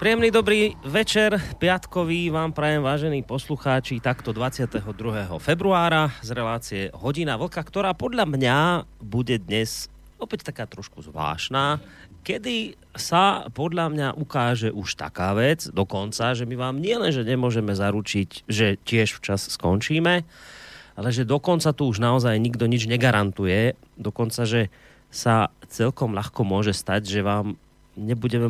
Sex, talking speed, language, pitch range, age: male, 130 wpm, Slovak, 100-140 Hz, 30-49